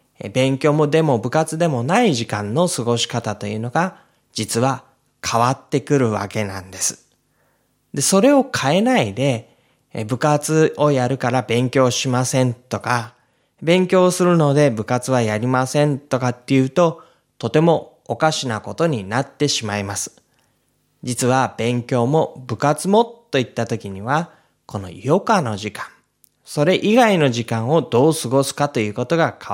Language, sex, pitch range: Japanese, male, 115-160 Hz